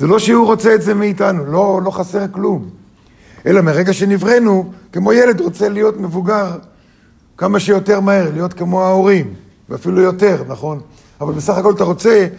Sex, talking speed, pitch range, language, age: male, 160 wpm, 145-195 Hz, Hebrew, 50-69